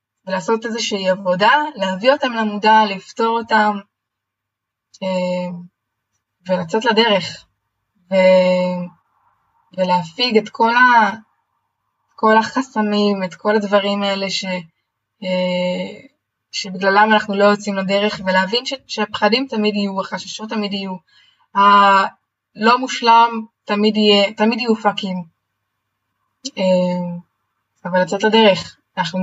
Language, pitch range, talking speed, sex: Hebrew, 185-220 Hz, 85 wpm, female